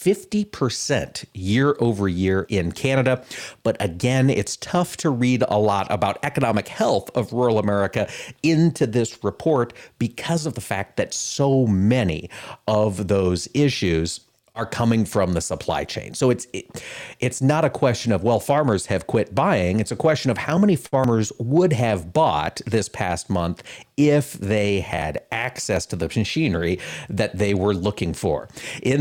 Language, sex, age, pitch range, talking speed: English, male, 40-59, 100-135 Hz, 160 wpm